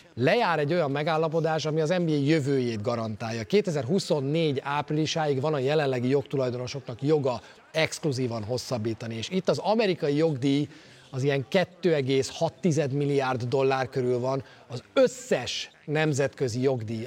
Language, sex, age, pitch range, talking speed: Hungarian, male, 30-49, 125-160 Hz, 120 wpm